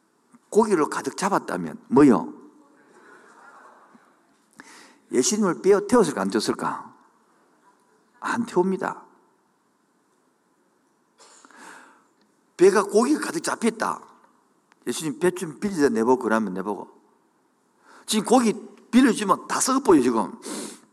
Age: 50-69